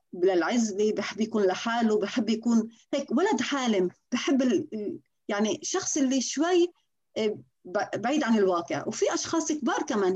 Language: Arabic